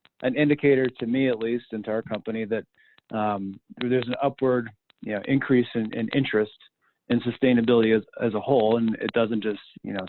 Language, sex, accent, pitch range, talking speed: English, male, American, 105-120 Hz, 195 wpm